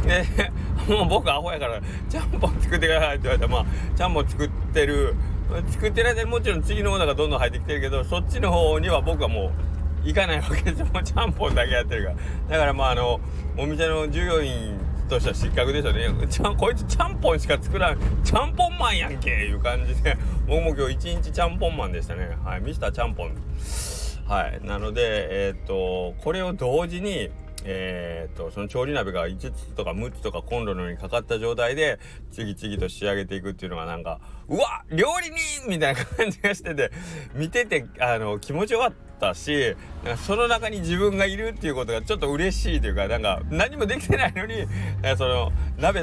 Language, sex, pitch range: Japanese, male, 75-120 Hz